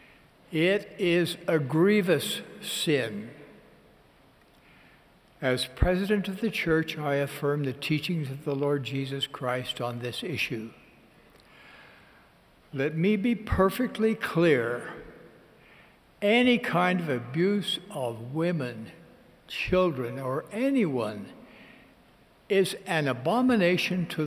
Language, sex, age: English, male, 60-79